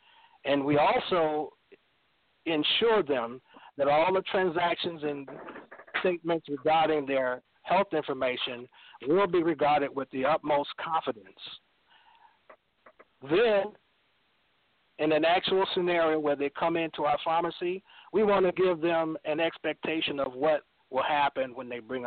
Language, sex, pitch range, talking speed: English, male, 140-180 Hz, 130 wpm